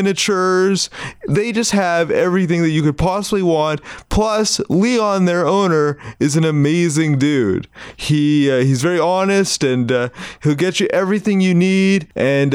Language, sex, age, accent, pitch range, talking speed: English, male, 30-49, American, 155-195 Hz, 155 wpm